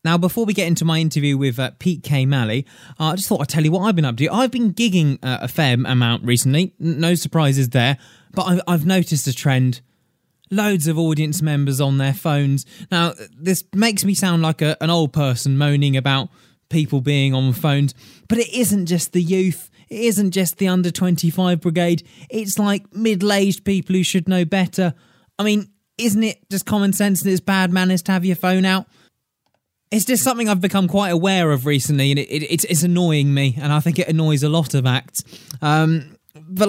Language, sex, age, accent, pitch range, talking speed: English, male, 20-39, British, 145-190 Hz, 215 wpm